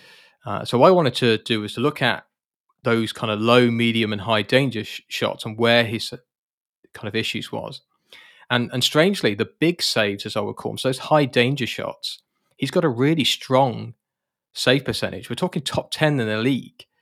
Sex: male